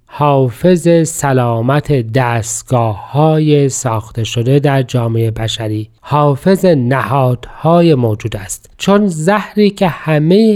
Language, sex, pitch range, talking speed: Persian, male, 125-160 Hz, 90 wpm